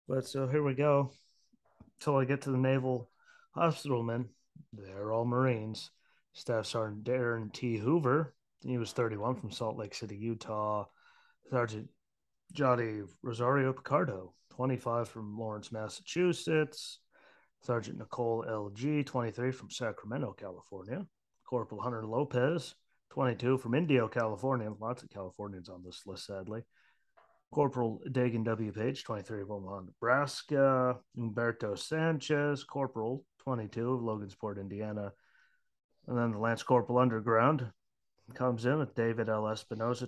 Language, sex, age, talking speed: English, male, 30-49, 125 wpm